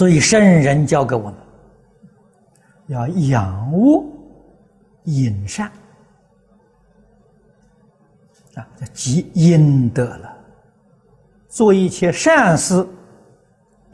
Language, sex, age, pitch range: Chinese, male, 60-79, 125-195 Hz